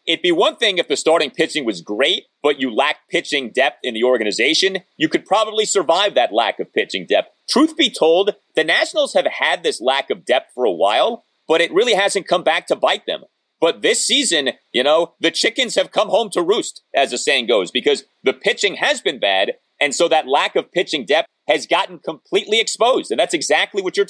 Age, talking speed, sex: 30-49, 220 wpm, male